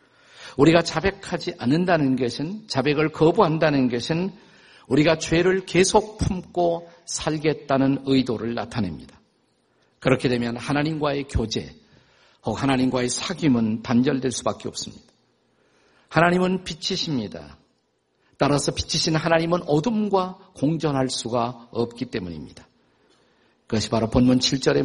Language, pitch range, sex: Korean, 125-170 Hz, male